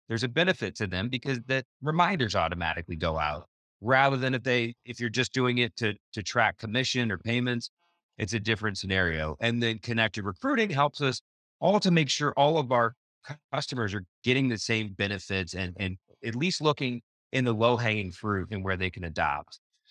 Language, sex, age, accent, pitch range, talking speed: English, male, 30-49, American, 100-130 Hz, 195 wpm